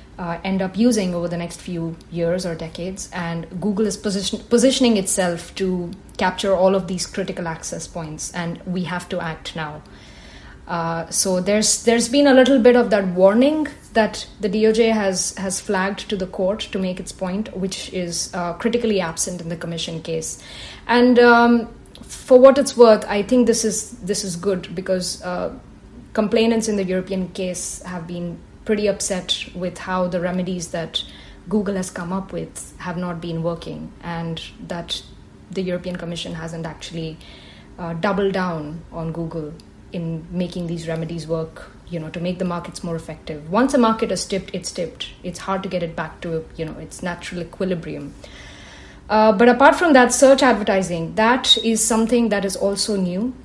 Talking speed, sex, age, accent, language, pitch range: 180 wpm, female, 30-49, Indian, English, 170-215 Hz